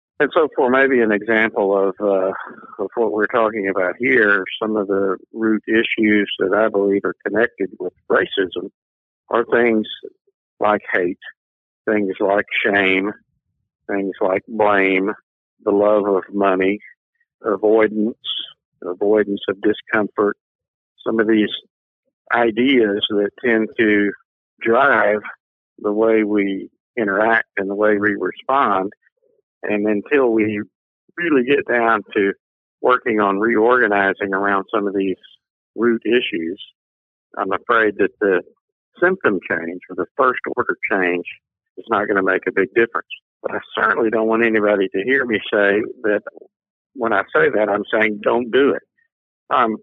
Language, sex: English, male